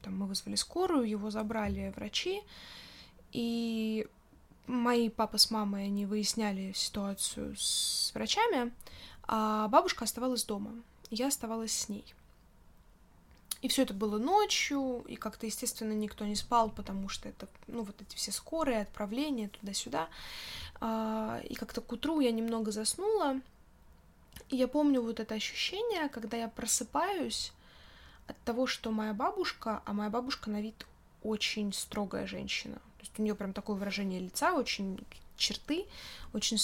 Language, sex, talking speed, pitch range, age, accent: Russian, female, 140 wpm, 205-245 Hz, 10-29, native